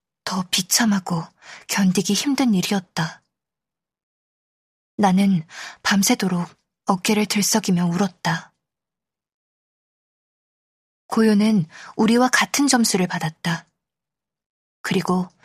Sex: female